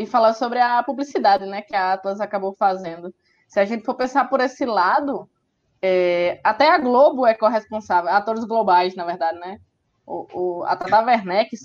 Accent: Brazilian